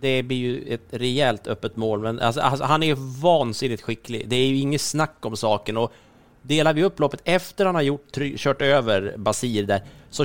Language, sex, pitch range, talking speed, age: Swedish, male, 120-150 Hz, 210 wpm, 30-49